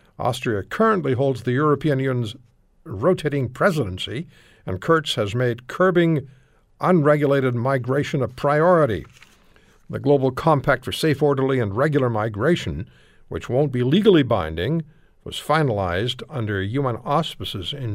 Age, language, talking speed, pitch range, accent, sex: 60-79, English, 125 wpm, 120-150 Hz, American, male